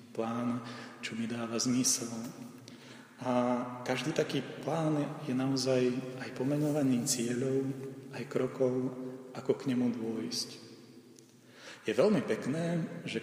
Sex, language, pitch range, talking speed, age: male, Slovak, 115-140 Hz, 110 wpm, 40-59